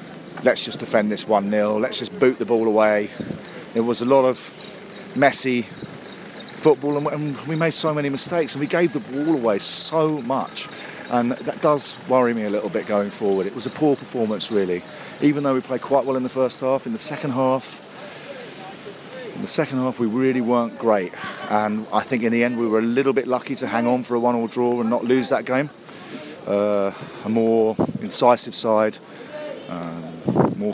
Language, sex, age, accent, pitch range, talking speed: English, male, 40-59, British, 110-145 Hz, 195 wpm